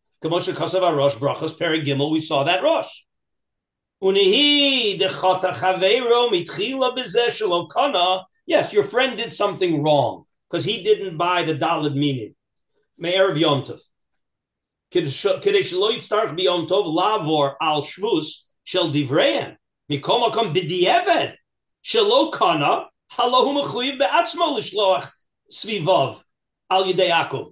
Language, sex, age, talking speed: English, male, 50-69, 35 wpm